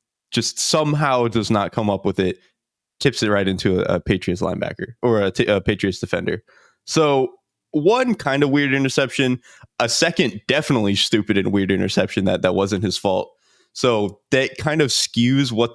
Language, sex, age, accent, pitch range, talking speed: English, male, 20-39, American, 105-135 Hz, 170 wpm